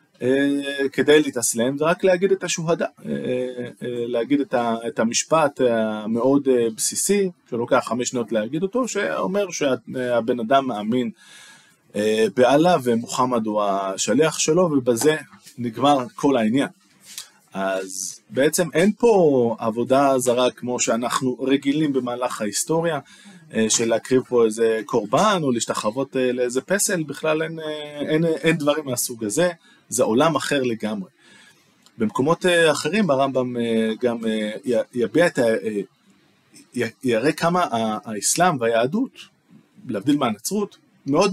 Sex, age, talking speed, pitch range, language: male, 20-39, 110 wpm, 115-160 Hz, Hebrew